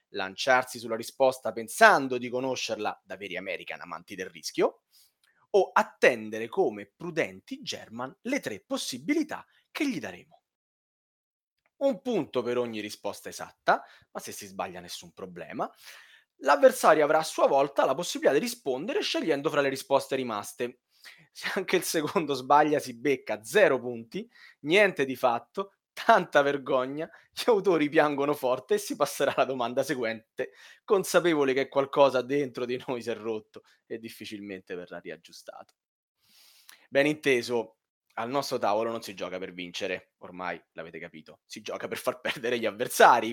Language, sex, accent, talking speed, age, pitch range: Italian, male, native, 145 wpm, 30-49, 115-155 Hz